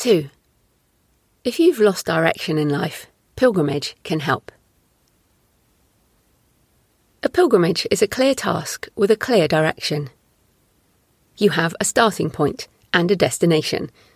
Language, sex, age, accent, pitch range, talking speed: English, female, 30-49, British, 160-220 Hz, 120 wpm